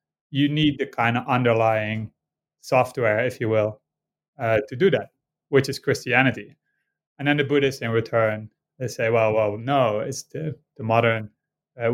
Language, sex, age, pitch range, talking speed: English, male, 30-49, 115-140 Hz, 165 wpm